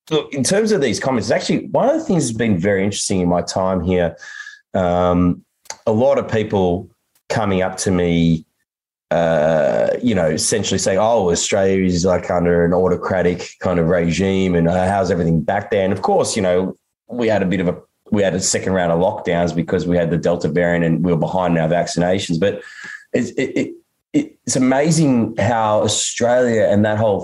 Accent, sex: Australian, male